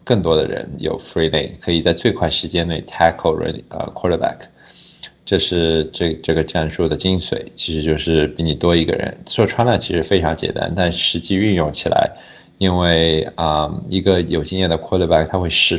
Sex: male